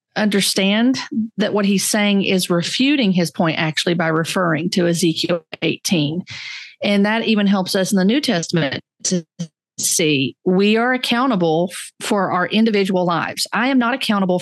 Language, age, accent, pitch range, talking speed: English, 40-59, American, 180-225 Hz, 160 wpm